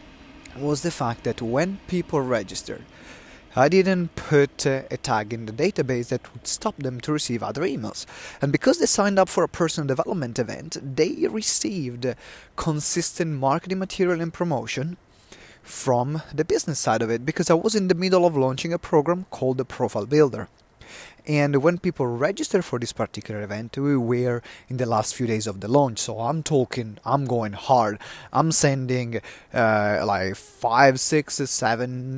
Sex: male